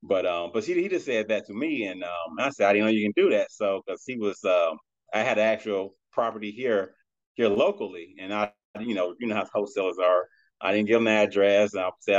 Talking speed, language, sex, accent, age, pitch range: 260 wpm, English, male, American, 30-49, 100-115 Hz